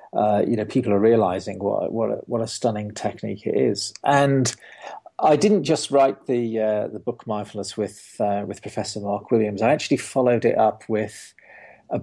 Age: 40-59